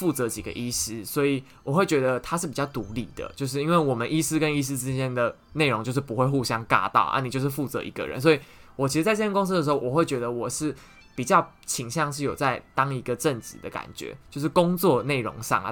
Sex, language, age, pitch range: male, Chinese, 20-39, 125-155 Hz